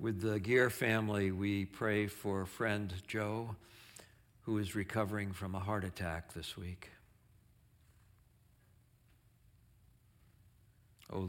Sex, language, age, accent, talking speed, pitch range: male, English, 60-79, American, 100 wpm, 95-115 Hz